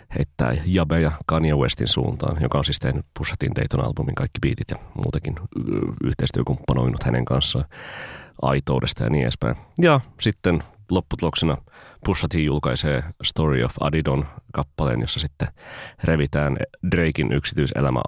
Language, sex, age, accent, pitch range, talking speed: Finnish, male, 30-49, native, 70-85 Hz, 115 wpm